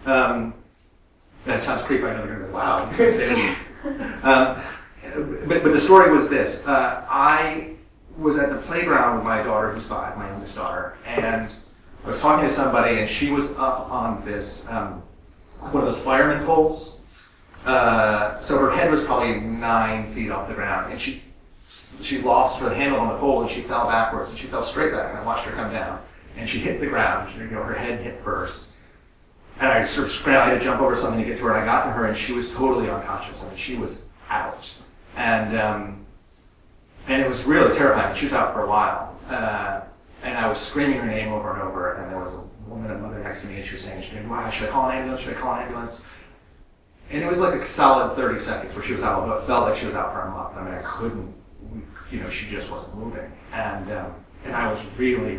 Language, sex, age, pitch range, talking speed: English, male, 30-49, 95-130 Hz, 230 wpm